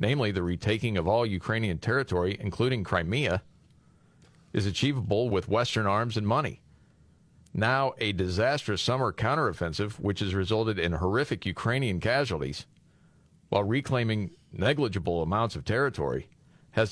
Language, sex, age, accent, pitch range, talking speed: English, male, 40-59, American, 95-130 Hz, 125 wpm